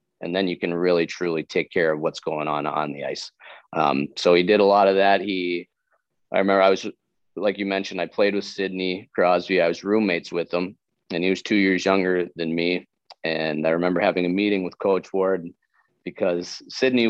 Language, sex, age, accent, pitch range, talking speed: English, male, 30-49, American, 85-100 Hz, 210 wpm